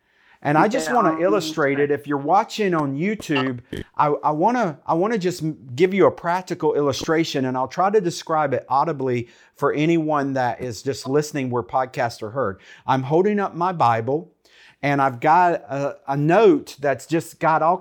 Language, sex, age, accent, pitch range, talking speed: English, male, 50-69, American, 135-180 Hz, 190 wpm